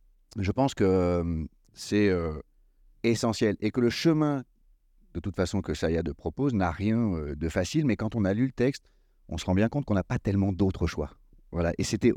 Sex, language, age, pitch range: male, French, 40-59, 85-125 Hz